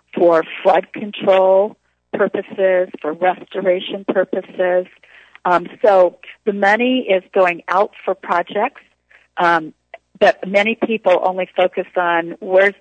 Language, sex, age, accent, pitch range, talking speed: English, female, 50-69, American, 165-190 Hz, 110 wpm